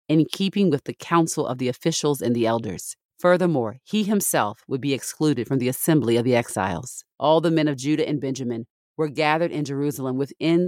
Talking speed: 195 wpm